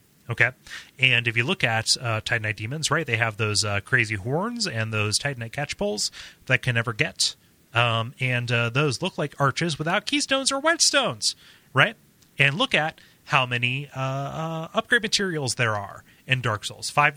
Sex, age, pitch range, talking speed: male, 30-49, 110-155 Hz, 180 wpm